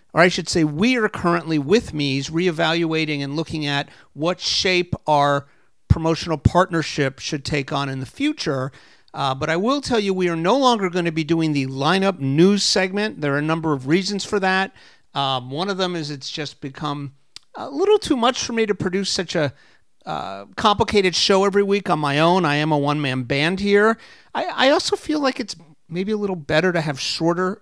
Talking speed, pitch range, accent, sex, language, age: 210 wpm, 145-195 Hz, American, male, English, 50-69